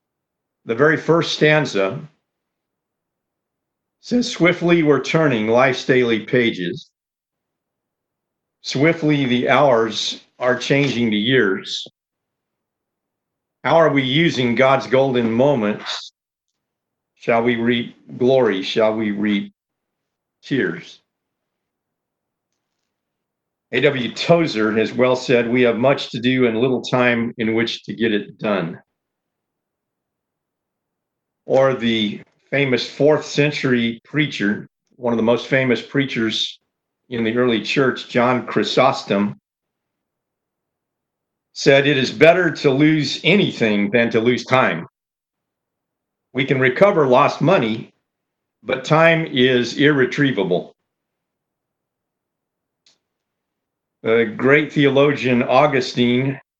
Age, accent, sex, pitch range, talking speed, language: 50-69, American, male, 115-145 Hz, 100 wpm, English